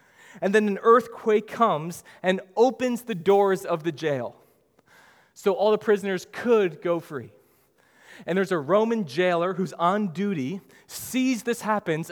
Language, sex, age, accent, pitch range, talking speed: English, male, 30-49, American, 140-210 Hz, 150 wpm